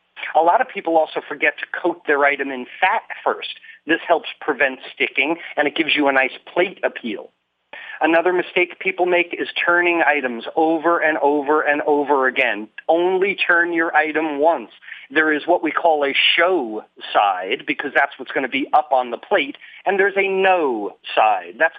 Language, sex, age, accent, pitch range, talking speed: English, male, 40-59, American, 150-195 Hz, 185 wpm